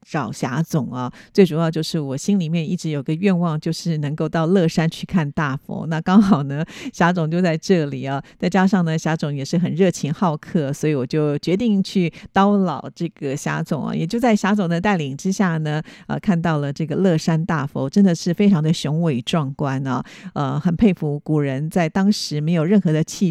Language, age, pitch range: Chinese, 50-69, 155-190 Hz